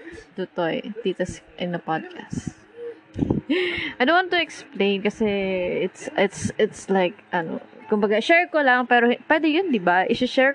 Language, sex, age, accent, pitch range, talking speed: Filipino, female, 20-39, native, 180-250 Hz, 155 wpm